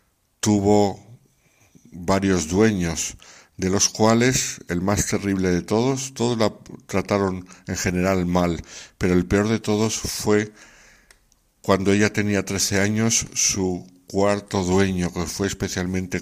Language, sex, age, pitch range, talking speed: Spanish, male, 60-79, 90-105 Hz, 125 wpm